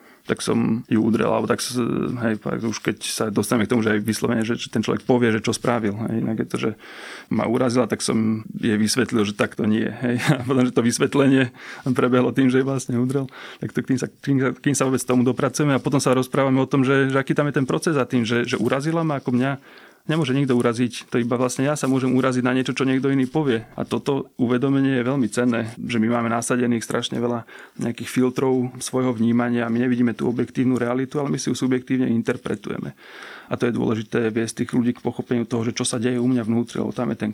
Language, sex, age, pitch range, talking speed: Slovak, male, 30-49, 115-130 Hz, 235 wpm